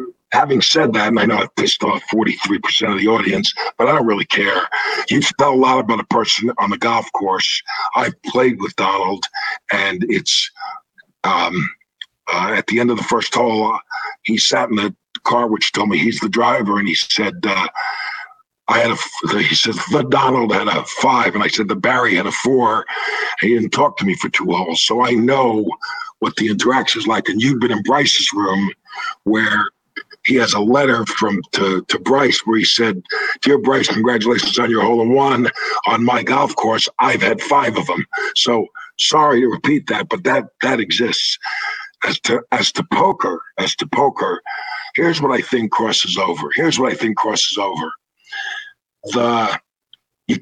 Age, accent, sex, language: 50-69, American, male, English